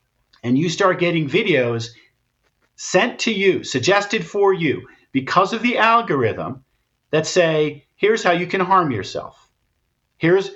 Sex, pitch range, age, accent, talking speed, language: male, 140-185 Hz, 50-69, American, 135 wpm, English